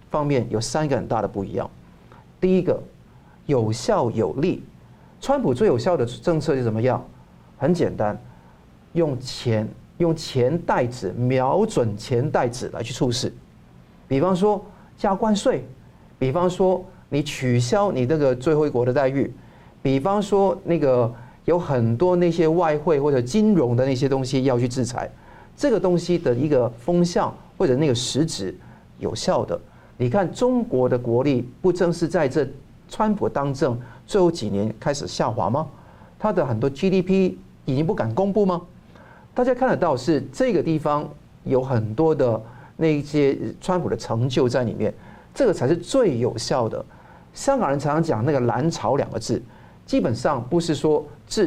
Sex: male